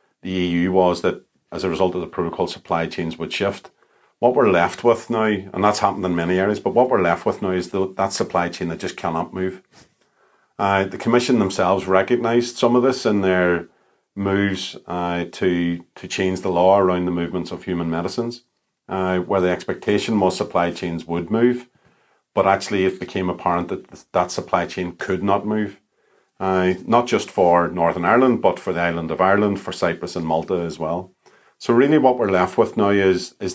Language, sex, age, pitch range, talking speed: English, male, 40-59, 85-100 Hz, 195 wpm